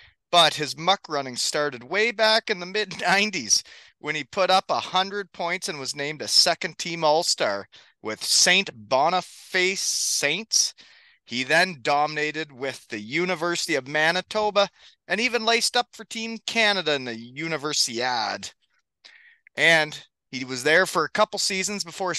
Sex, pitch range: male, 155-210 Hz